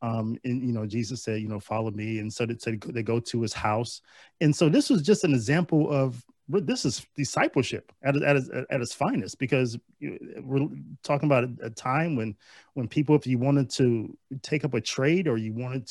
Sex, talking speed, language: male, 200 wpm, English